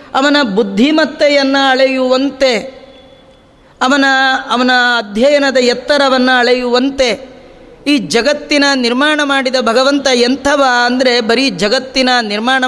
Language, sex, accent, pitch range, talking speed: Kannada, female, native, 245-275 Hz, 85 wpm